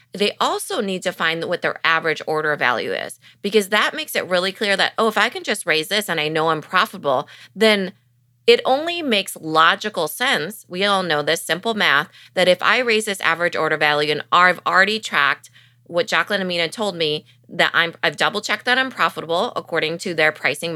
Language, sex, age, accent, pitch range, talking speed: English, female, 20-39, American, 155-210 Hz, 200 wpm